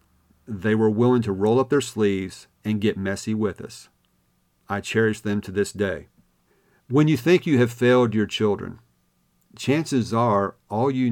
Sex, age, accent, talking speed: male, 50-69, American, 165 wpm